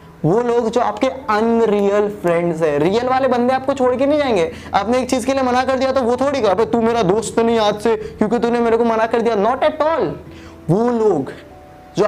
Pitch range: 195-260 Hz